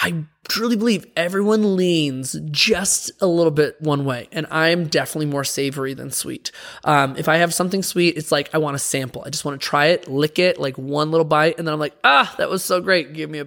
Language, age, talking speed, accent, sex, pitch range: English, 20-39, 240 wpm, American, male, 150-180 Hz